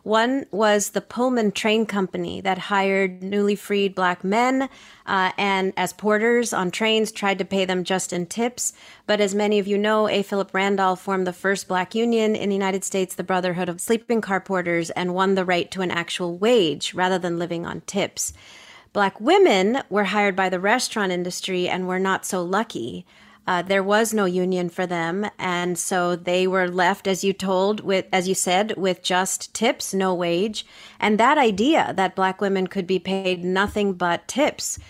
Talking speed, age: 190 wpm, 30-49